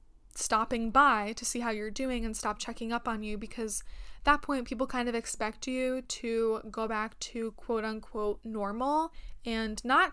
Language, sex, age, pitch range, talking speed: English, female, 10-29, 220-255 Hz, 180 wpm